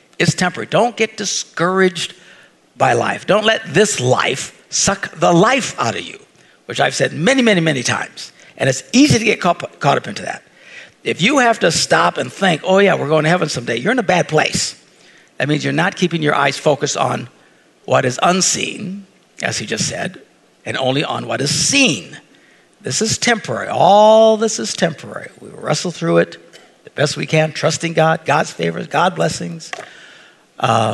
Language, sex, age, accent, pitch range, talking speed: English, male, 60-79, American, 150-215 Hz, 185 wpm